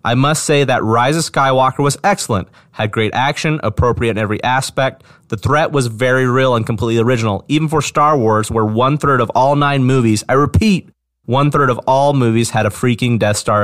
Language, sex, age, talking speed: English, male, 30-49, 200 wpm